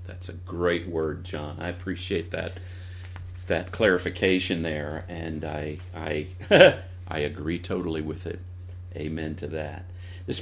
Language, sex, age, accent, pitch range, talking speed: English, male, 40-59, American, 85-90 Hz, 130 wpm